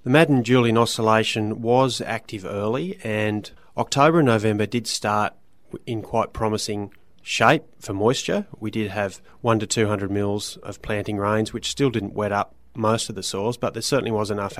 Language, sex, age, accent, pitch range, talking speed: English, male, 30-49, Australian, 100-115 Hz, 175 wpm